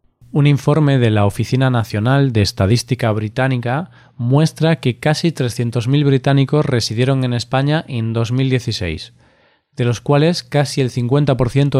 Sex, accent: male, Spanish